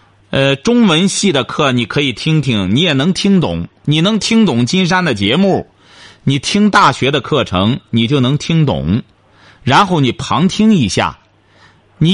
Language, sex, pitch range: Chinese, male, 140-190 Hz